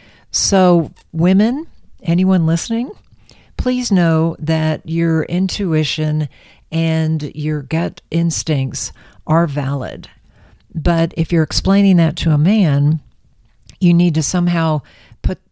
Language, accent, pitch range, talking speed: English, American, 140-170 Hz, 110 wpm